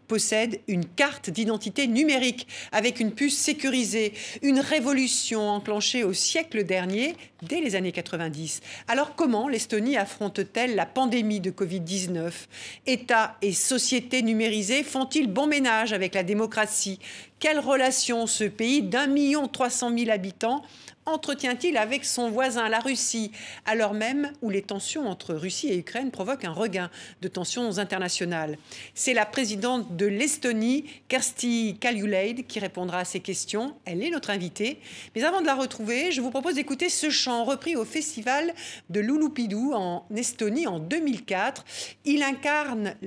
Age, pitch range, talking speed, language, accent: 50-69, 200-270 Hz, 150 wpm, French, French